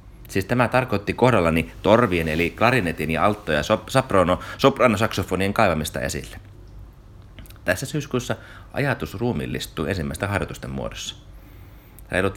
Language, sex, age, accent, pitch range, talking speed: Finnish, male, 30-49, native, 85-115 Hz, 110 wpm